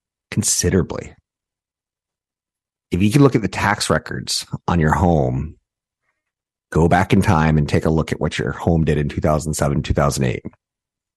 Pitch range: 80-105 Hz